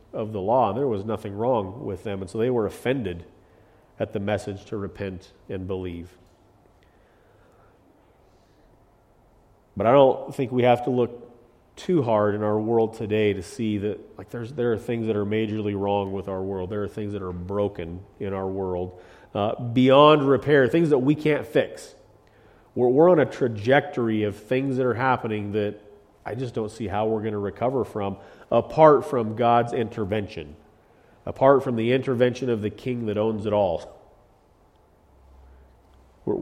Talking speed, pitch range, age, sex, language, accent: 170 wpm, 100-120 Hz, 40-59, male, English, American